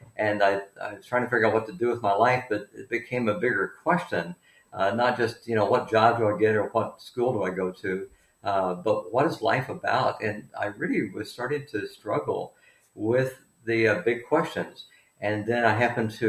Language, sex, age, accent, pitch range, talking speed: English, male, 50-69, American, 105-120 Hz, 220 wpm